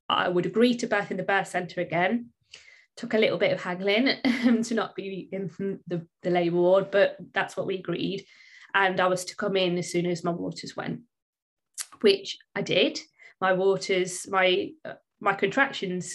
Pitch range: 180-210 Hz